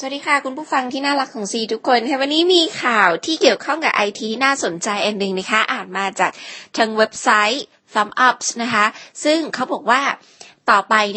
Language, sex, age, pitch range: Thai, female, 20-39, 185-245 Hz